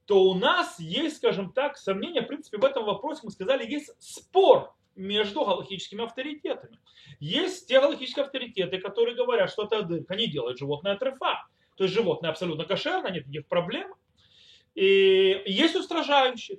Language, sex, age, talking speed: Russian, male, 30-49, 155 wpm